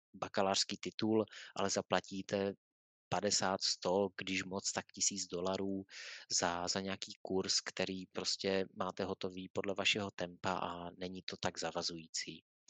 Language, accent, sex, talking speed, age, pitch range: Czech, native, male, 130 wpm, 30-49, 95-105 Hz